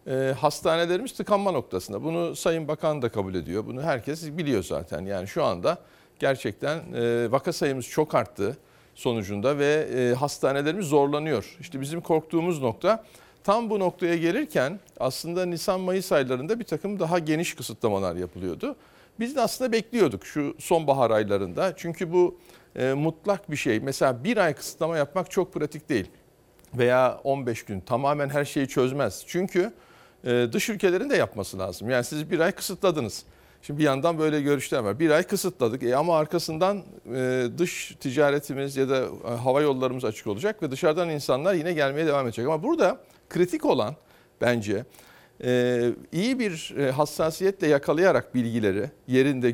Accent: native